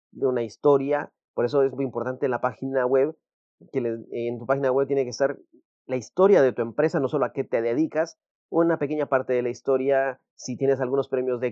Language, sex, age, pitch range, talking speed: English, male, 30-49, 120-135 Hz, 215 wpm